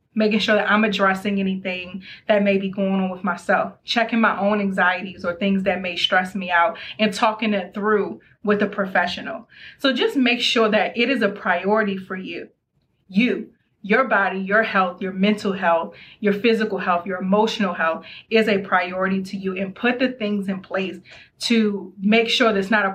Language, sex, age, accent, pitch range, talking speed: English, female, 30-49, American, 190-225 Hz, 195 wpm